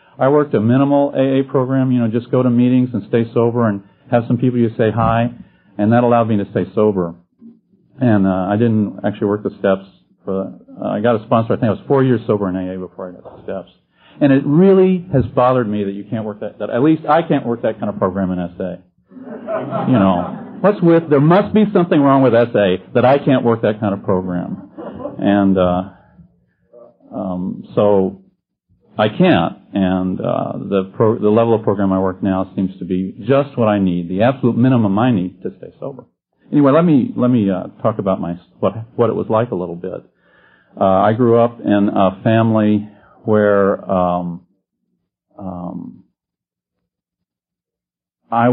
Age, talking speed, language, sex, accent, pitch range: 40-59, 195 wpm, English, male, American, 95-125 Hz